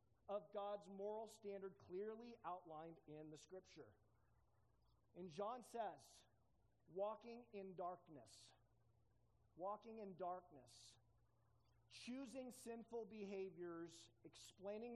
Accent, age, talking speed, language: American, 40-59, 90 wpm, English